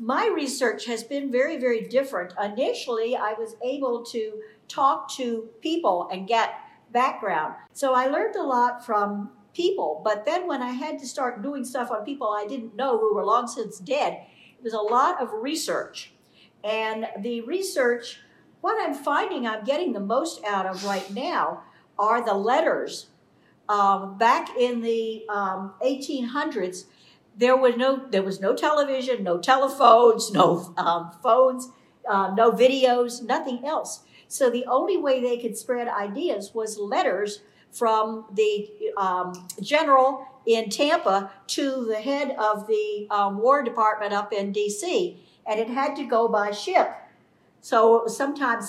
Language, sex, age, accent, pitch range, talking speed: English, female, 50-69, American, 215-270 Hz, 160 wpm